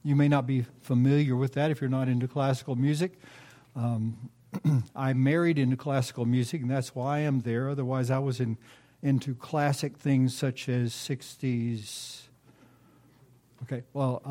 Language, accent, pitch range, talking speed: English, American, 125-145 Hz, 150 wpm